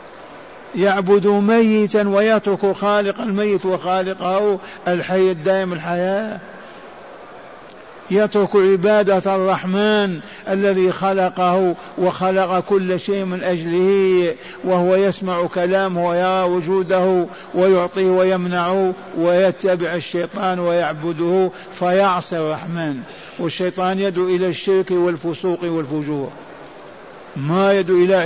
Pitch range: 175-190 Hz